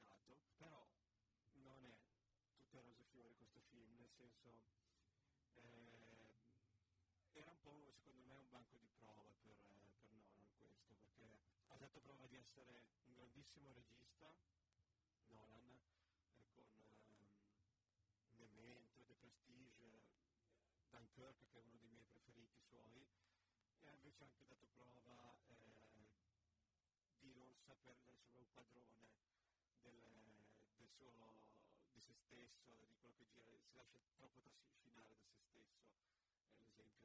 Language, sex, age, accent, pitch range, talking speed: Italian, male, 40-59, native, 105-125 Hz, 135 wpm